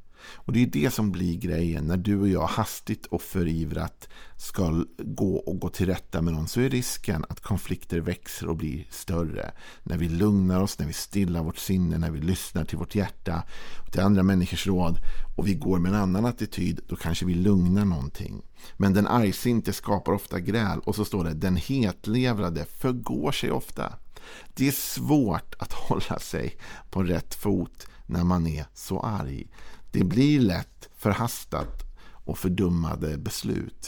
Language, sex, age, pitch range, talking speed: Swedish, male, 50-69, 85-100 Hz, 175 wpm